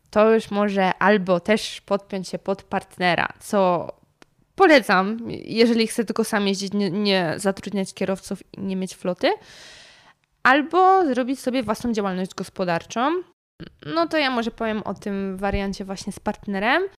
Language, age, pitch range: Polish, 20-39, 185-225 Hz